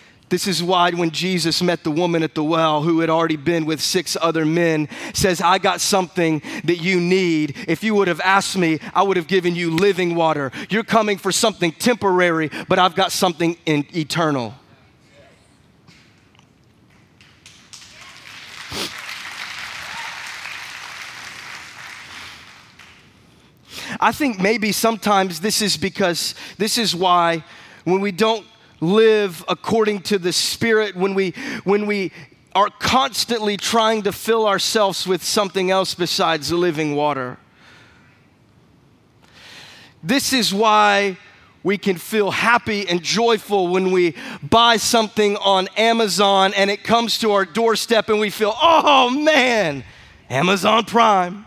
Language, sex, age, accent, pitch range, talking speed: English, male, 20-39, American, 170-215 Hz, 130 wpm